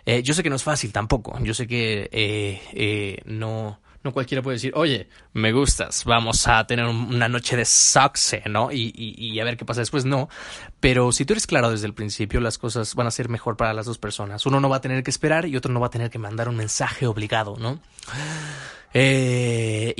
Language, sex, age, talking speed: Spanish, male, 20-39, 230 wpm